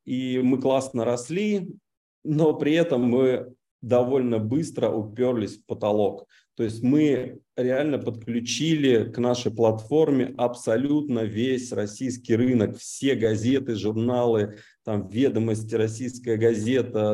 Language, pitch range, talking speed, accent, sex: Russian, 110-135 Hz, 110 wpm, native, male